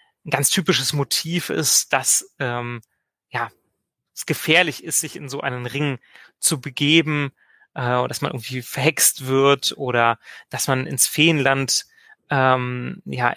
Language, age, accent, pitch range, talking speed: German, 30-49, German, 130-175 Hz, 130 wpm